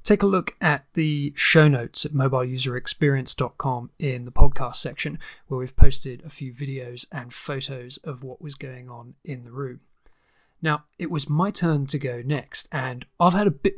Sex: male